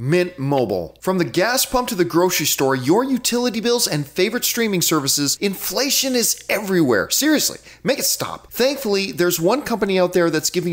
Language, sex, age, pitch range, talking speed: English, male, 40-59, 155-215 Hz, 180 wpm